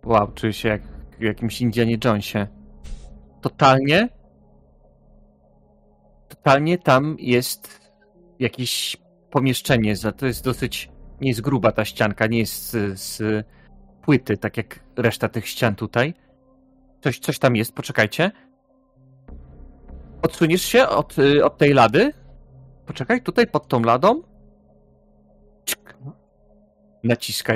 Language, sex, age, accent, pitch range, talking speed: Polish, male, 30-49, native, 95-130 Hz, 110 wpm